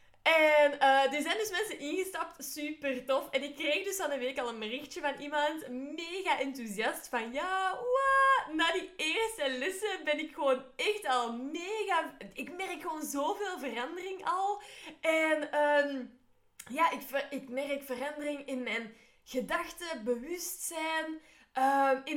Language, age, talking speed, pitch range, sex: Dutch, 20-39, 150 wpm, 260-350 Hz, female